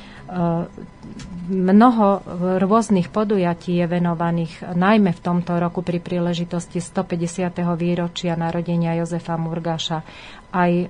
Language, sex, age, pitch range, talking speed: Slovak, female, 30-49, 175-185 Hz, 100 wpm